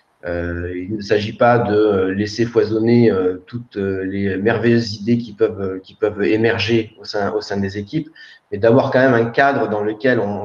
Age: 30-49